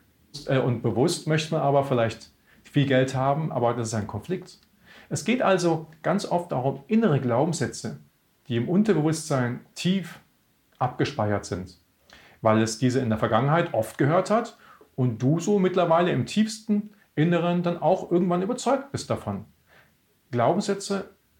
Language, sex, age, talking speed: German, male, 40-59, 145 wpm